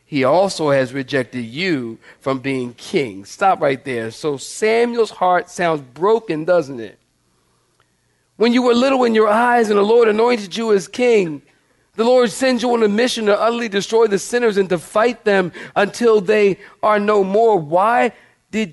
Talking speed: 175 wpm